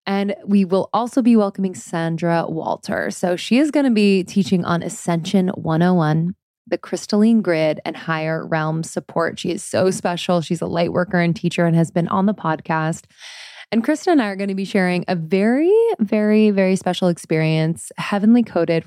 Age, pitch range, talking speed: 20-39, 170-200 Hz, 185 wpm